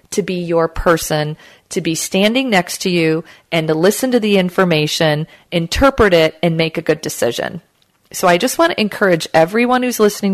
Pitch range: 165-220 Hz